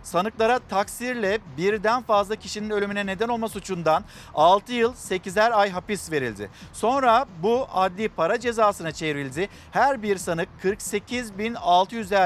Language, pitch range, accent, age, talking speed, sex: Turkish, 180-230 Hz, native, 50-69, 120 wpm, male